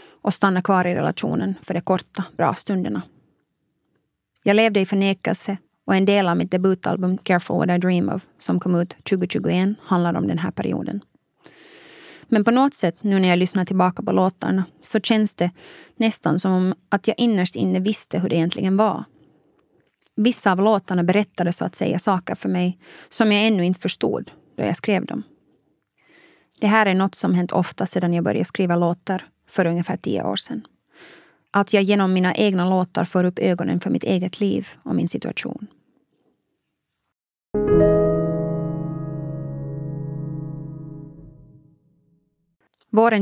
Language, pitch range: Swedish, 170-200 Hz